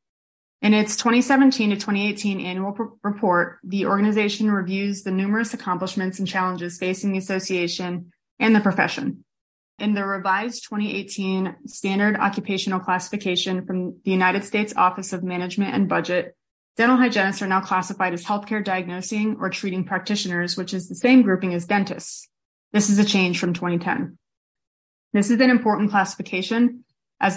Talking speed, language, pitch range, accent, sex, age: 150 wpm, English, 180-205 Hz, American, female, 20-39